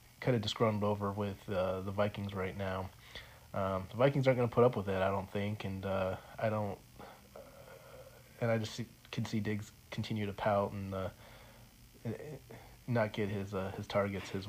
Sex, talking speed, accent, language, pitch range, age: male, 195 wpm, American, English, 100-120 Hz, 30-49